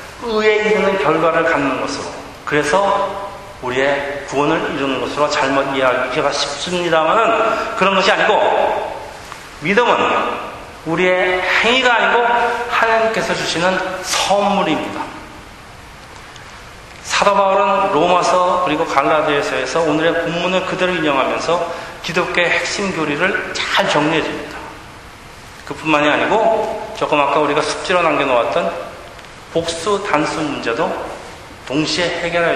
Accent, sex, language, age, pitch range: native, male, Korean, 40-59, 150-205 Hz